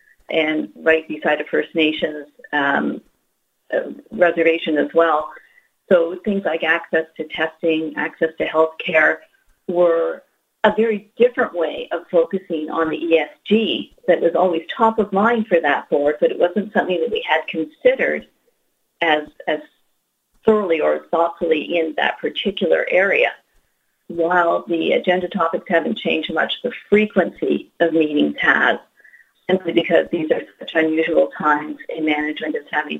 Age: 50-69